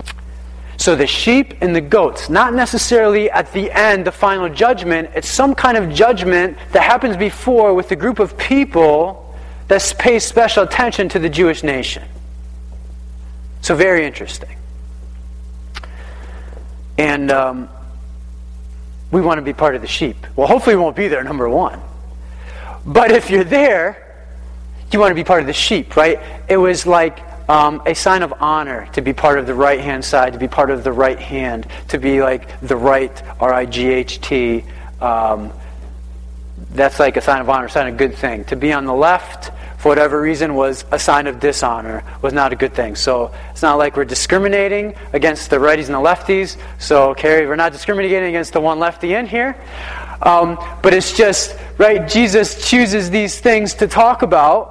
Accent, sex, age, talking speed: American, male, 30-49, 180 wpm